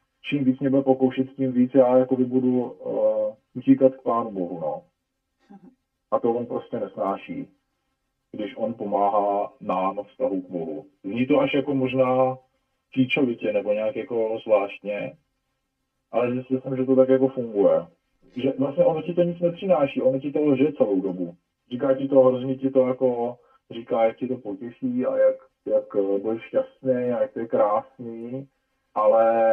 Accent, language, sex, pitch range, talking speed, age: native, Czech, male, 115-135 Hz, 165 wpm, 40-59